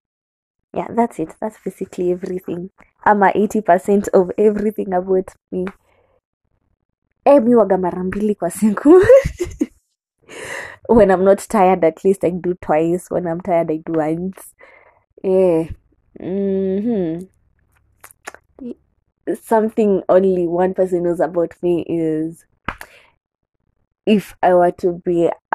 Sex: female